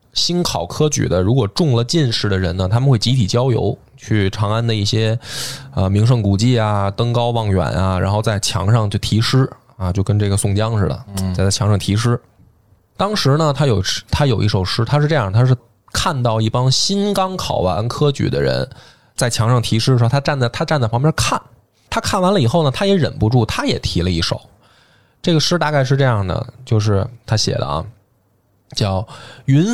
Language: Chinese